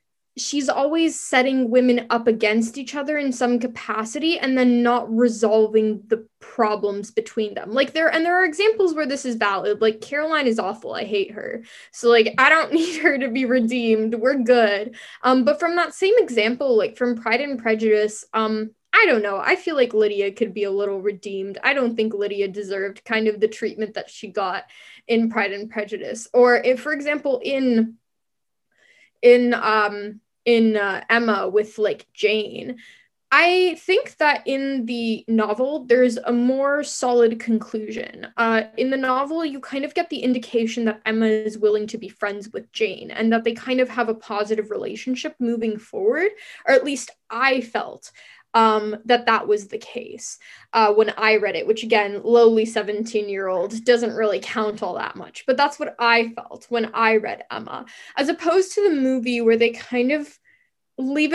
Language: English